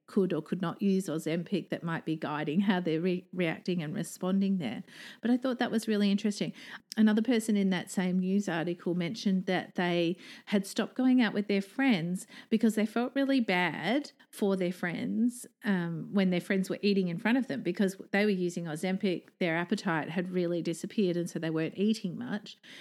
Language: English